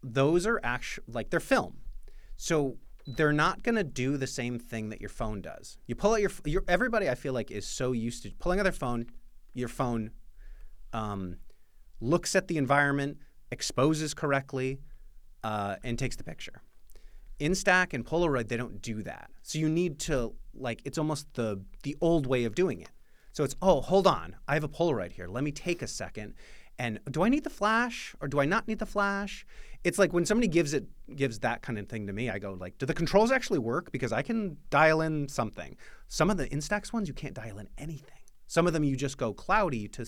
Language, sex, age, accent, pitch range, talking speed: English, male, 30-49, American, 115-160 Hz, 215 wpm